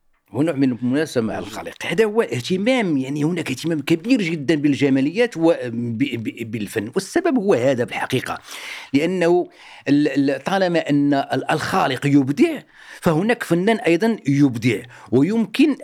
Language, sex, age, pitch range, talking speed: Arabic, male, 50-69, 115-170 Hz, 110 wpm